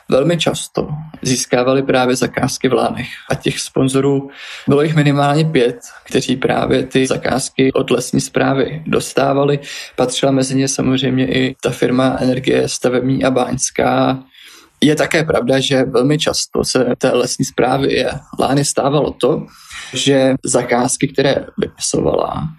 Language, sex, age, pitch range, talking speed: Czech, male, 20-39, 130-135 Hz, 135 wpm